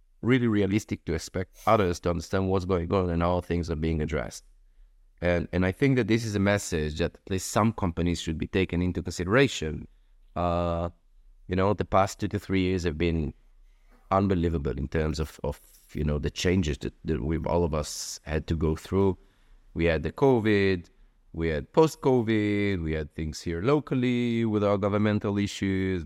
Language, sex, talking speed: English, male, 190 wpm